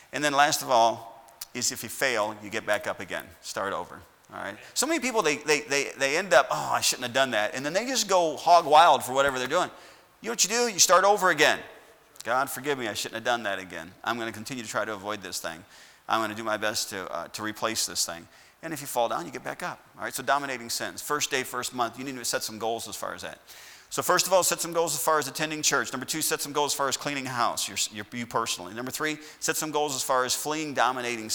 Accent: American